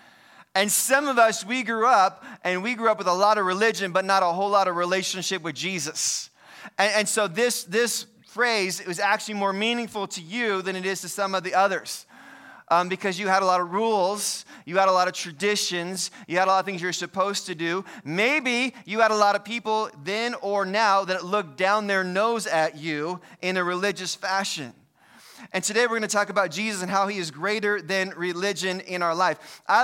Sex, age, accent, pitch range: male, 20-39, American, 180-210 Hz